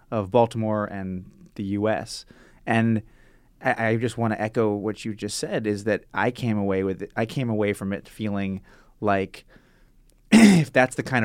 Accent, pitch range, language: American, 105-130 Hz, English